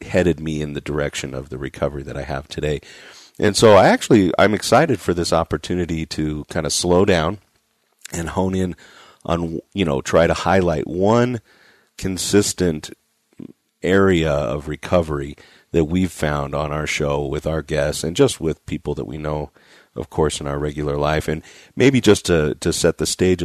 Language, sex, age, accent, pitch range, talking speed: English, male, 40-59, American, 75-85 Hz, 180 wpm